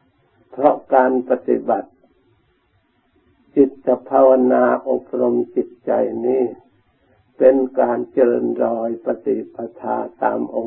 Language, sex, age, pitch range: Thai, male, 60-79, 125-140 Hz